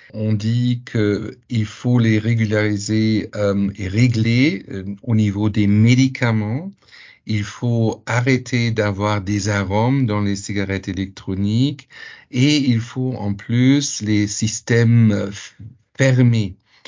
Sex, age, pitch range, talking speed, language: male, 50-69, 100-120 Hz, 115 wpm, French